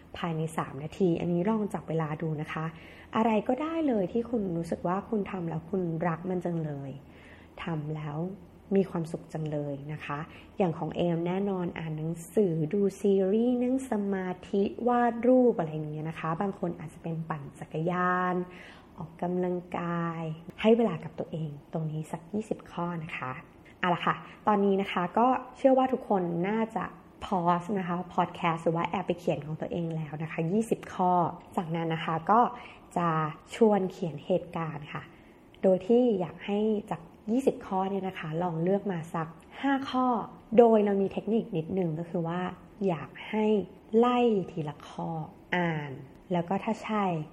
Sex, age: female, 20-39